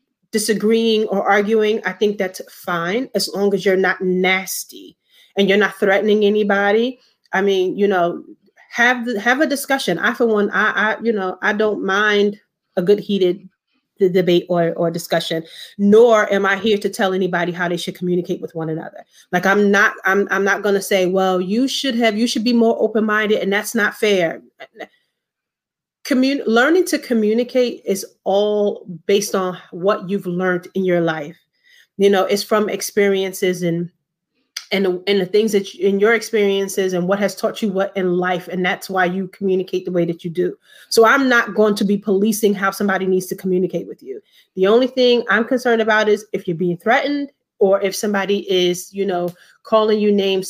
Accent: American